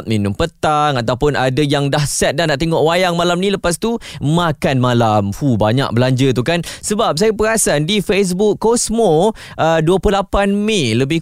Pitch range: 135-180 Hz